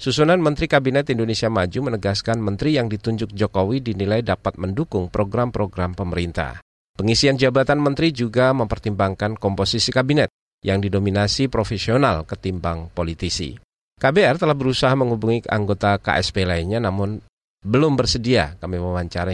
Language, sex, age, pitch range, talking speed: Indonesian, male, 40-59, 95-130 Hz, 120 wpm